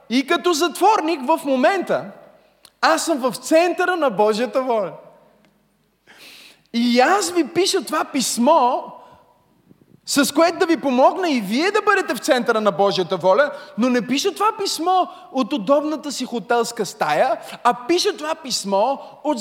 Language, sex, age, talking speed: Bulgarian, male, 30-49, 145 wpm